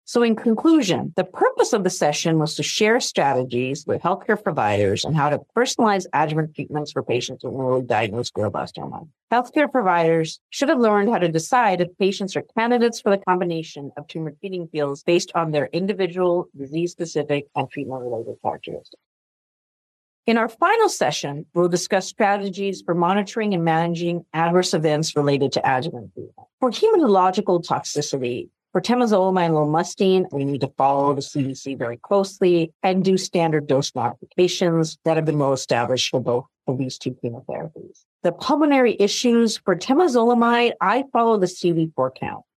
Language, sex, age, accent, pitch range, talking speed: English, female, 50-69, American, 145-205 Hz, 160 wpm